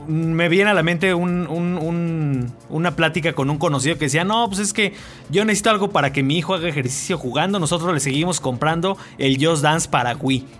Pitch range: 135-165 Hz